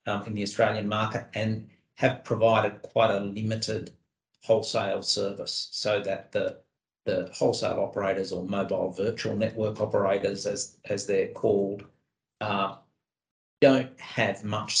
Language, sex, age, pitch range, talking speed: English, male, 50-69, 100-110 Hz, 130 wpm